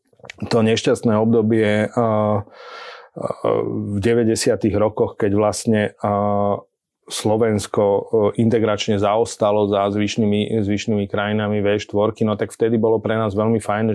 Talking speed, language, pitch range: 110 wpm, Slovak, 105-110 Hz